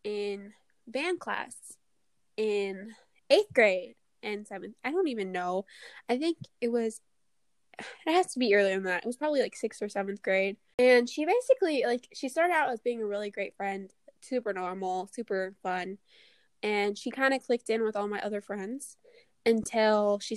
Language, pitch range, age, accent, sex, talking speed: English, 200-245 Hz, 10-29, American, female, 180 wpm